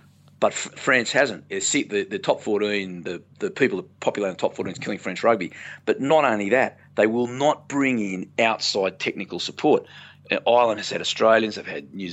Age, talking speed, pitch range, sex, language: 40-59, 205 wpm, 100-115 Hz, male, English